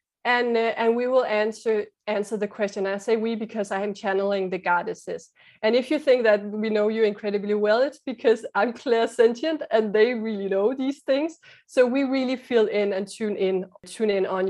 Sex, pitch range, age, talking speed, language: female, 195-245 Hz, 20-39, 205 wpm, English